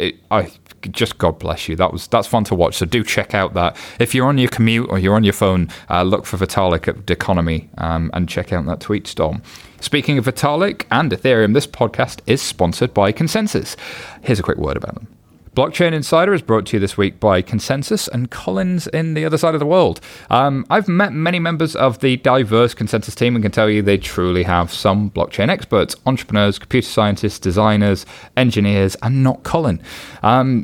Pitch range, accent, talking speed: 95-130 Hz, British, 205 wpm